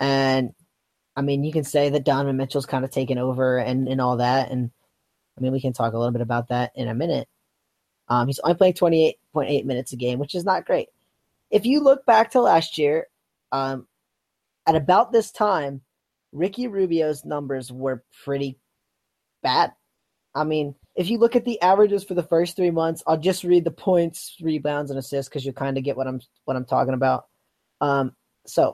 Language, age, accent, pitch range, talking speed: English, 20-39, American, 135-180 Hz, 200 wpm